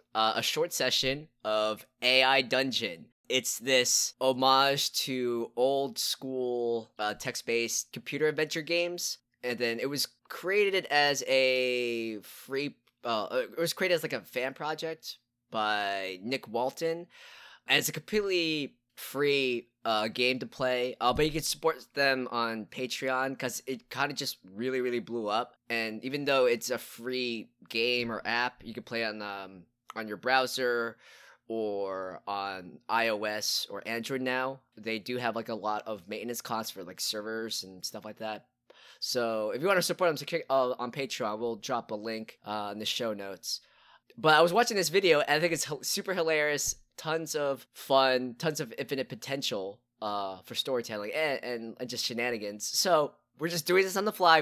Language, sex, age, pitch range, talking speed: English, male, 20-39, 115-140 Hz, 170 wpm